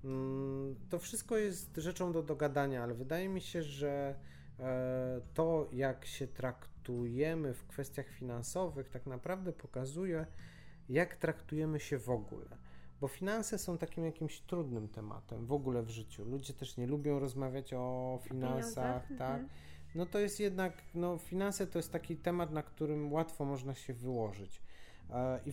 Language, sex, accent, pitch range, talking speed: Polish, male, native, 110-160 Hz, 145 wpm